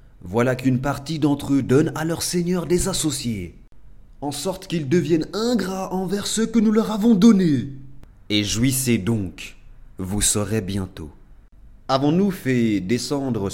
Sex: male